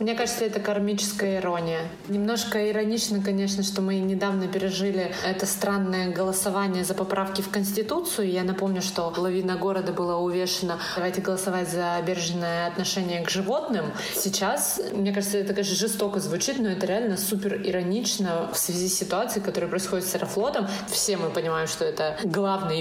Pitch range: 185-210 Hz